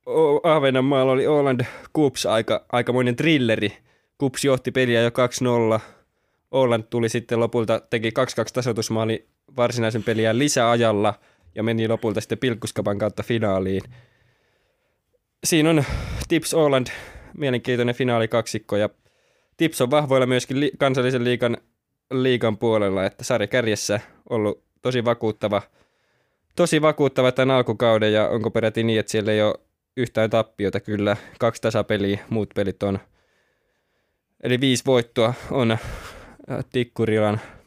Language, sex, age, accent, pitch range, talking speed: Finnish, male, 20-39, native, 105-130 Hz, 125 wpm